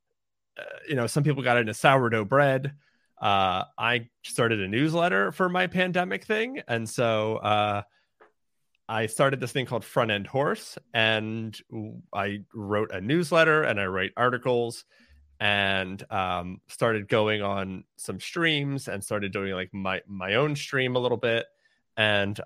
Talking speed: 150 wpm